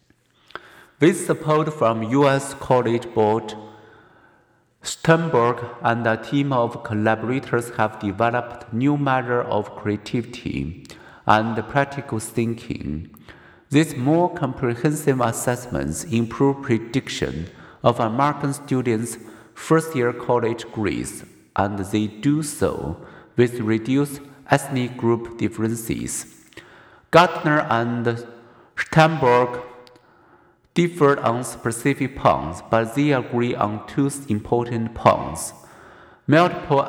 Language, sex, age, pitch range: Chinese, male, 50-69, 110-140 Hz